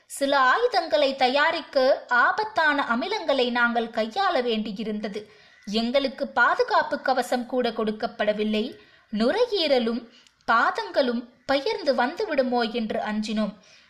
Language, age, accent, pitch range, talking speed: Tamil, 20-39, native, 235-300 Hz, 75 wpm